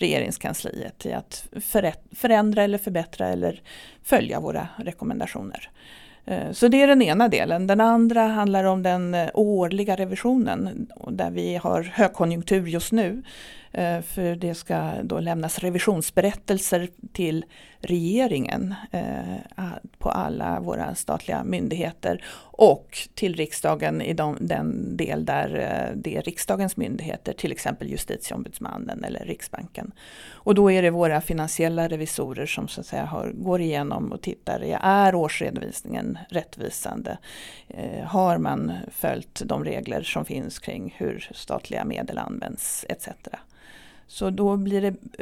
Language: English